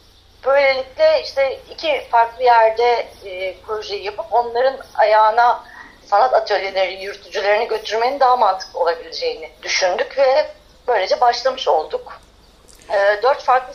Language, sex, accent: Turkish, female, native